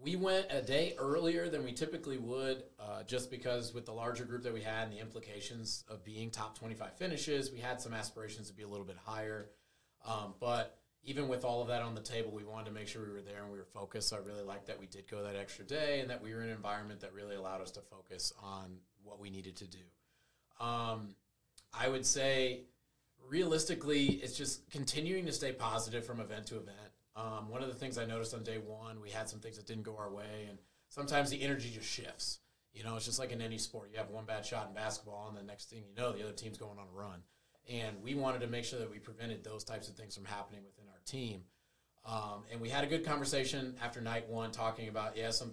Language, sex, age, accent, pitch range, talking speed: English, male, 30-49, American, 105-125 Hz, 250 wpm